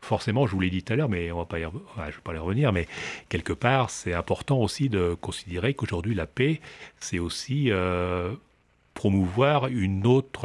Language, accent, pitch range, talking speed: French, French, 90-120 Hz, 210 wpm